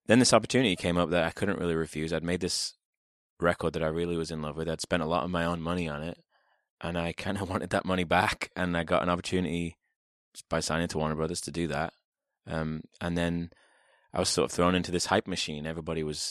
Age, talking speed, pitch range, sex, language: 20-39, 245 wpm, 80-90 Hz, male, English